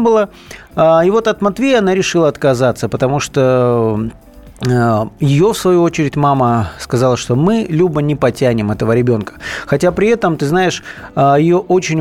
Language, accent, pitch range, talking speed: Russian, native, 120-160 Hz, 150 wpm